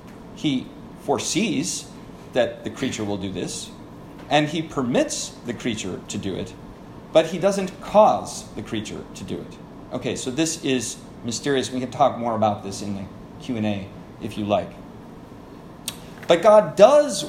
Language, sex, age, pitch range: English, male, 40-59, 110-145 Hz